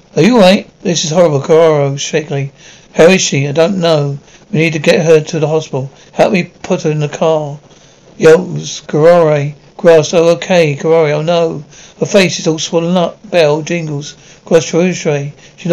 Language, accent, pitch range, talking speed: English, British, 155-180 Hz, 190 wpm